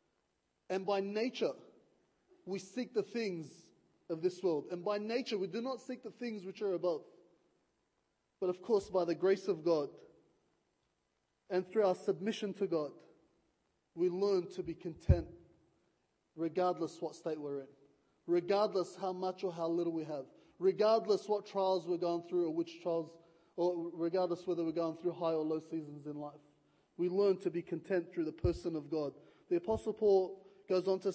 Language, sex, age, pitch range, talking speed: English, male, 20-39, 175-210 Hz, 175 wpm